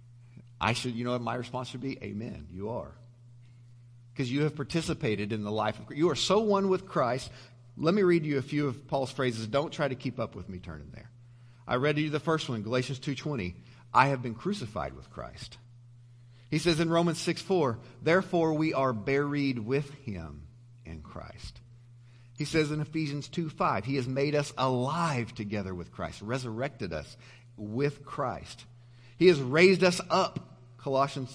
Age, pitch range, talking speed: 50-69, 115-145 Hz, 185 wpm